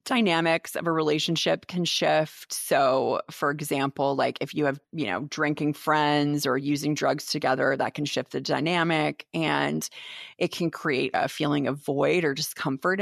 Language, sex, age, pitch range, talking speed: English, female, 30-49, 150-185 Hz, 165 wpm